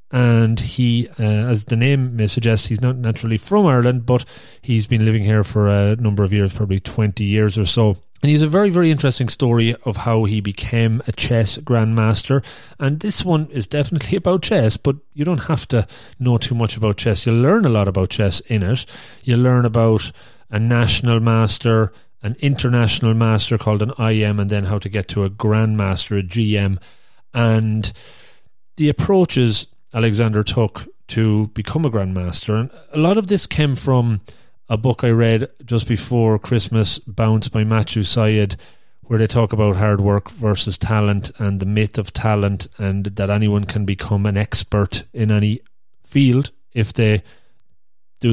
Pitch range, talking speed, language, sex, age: 105-125 Hz, 175 wpm, English, male, 30-49